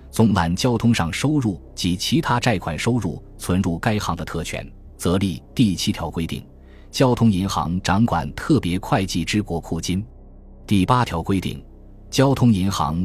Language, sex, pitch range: Chinese, male, 85-115 Hz